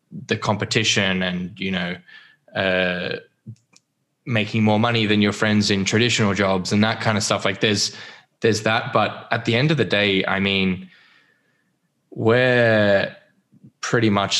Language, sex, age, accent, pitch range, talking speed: English, male, 10-29, Australian, 95-115 Hz, 150 wpm